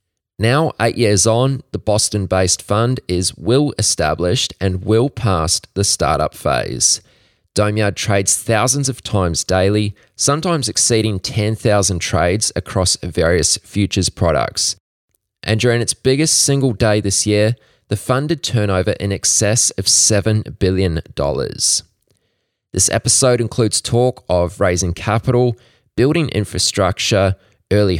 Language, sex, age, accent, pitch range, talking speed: English, male, 20-39, Australian, 95-120 Hz, 125 wpm